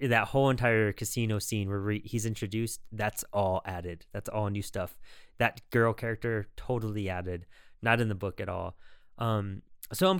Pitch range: 105-135 Hz